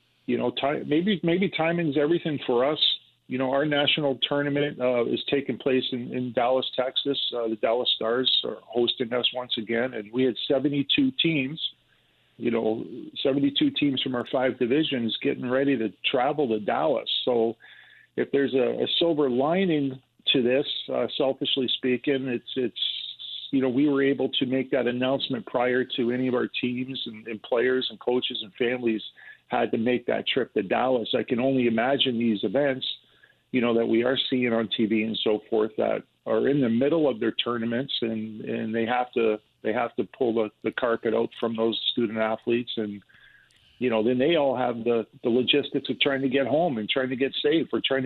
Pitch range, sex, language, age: 115-135 Hz, male, English, 40-59